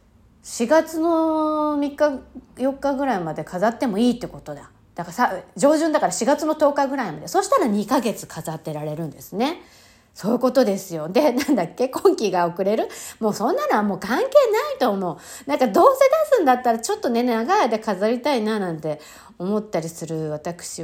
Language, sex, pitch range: Japanese, female, 175-275 Hz